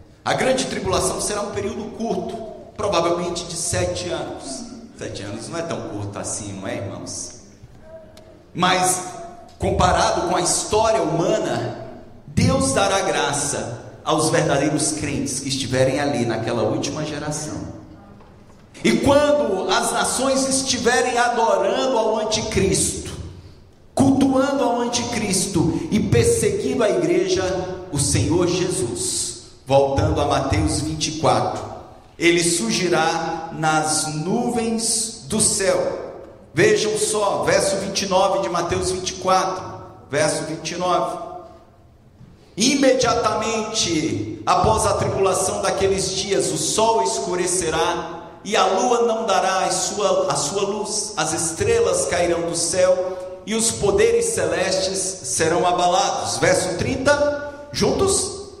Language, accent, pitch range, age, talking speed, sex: English, Brazilian, 145-220 Hz, 40-59, 110 wpm, male